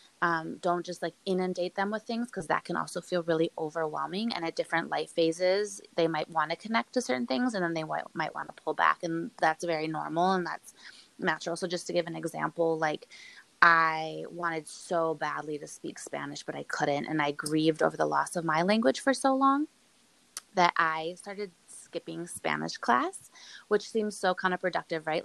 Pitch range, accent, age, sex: 160-200 Hz, American, 20-39, female